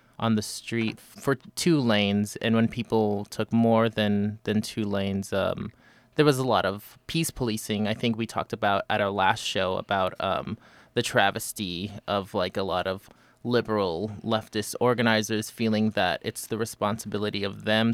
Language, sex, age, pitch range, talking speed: English, male, 20-39, 95-110 Hz, 170 wpm